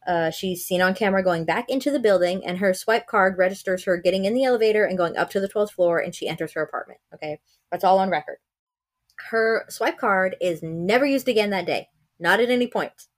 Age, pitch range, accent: 20-39, 180-225 Hz, American